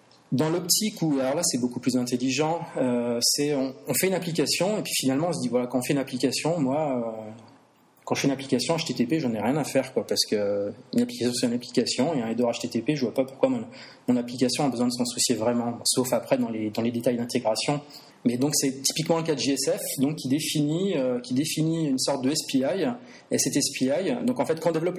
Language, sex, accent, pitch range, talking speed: French, male, French, 125-160 Hz, 240 wpm